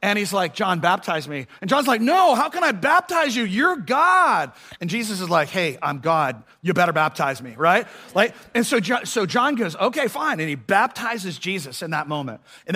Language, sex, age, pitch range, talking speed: English, male, 40-59, 140-185 Hz, 215 wpm